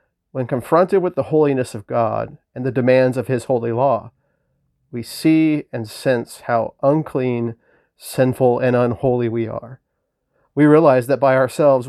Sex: male